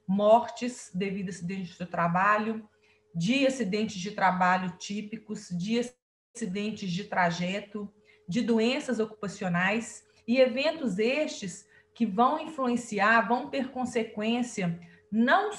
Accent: Brazilian